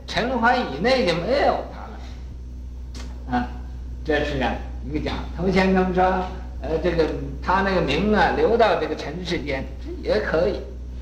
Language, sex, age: Chinese, male, 50-69